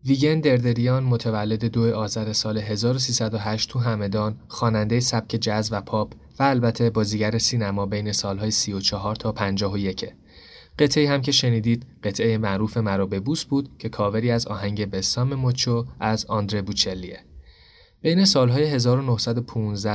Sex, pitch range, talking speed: male, 100-125 Hz, 135 wpm